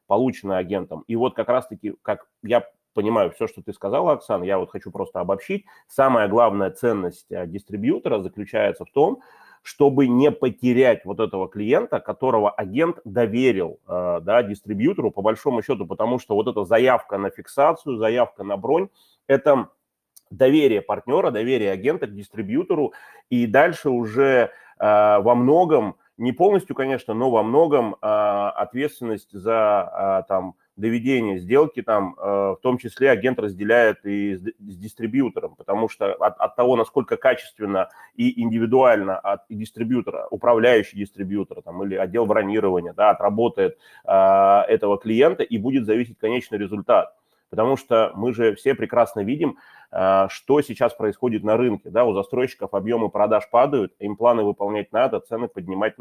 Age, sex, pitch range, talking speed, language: 30-49, male, 100-130 Hz, 150 wpm, Russian